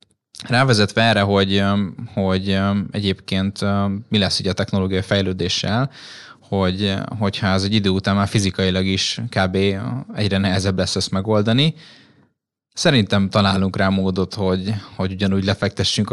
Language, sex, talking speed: Hungarian, male, 125 wpm